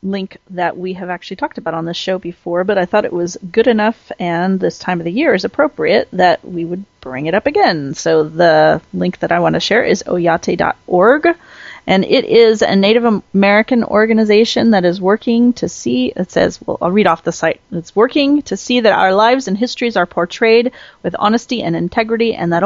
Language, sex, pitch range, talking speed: English, female, 170-215 Hz, 210 wpm